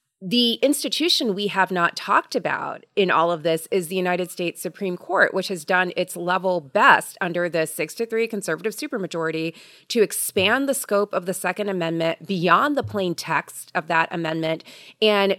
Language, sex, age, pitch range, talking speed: English, female, 30-49, 180-230 Hz, 175 wpm